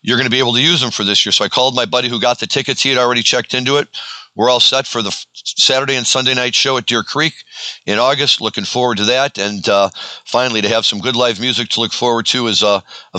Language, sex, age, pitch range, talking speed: English, male, 50-69, 100-120 Hz, 280 wpm